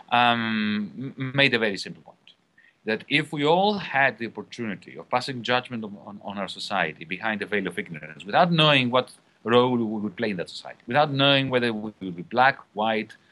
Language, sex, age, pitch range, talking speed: English, male, 40-59, 105-140 Hz, 200 wpm